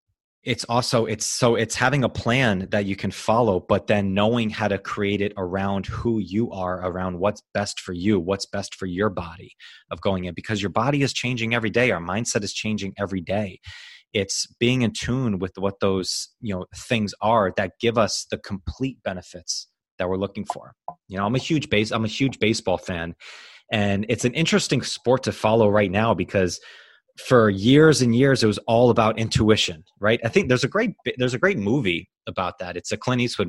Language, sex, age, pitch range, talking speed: English, male, 20-39, 95-125 Hz, 210 wpm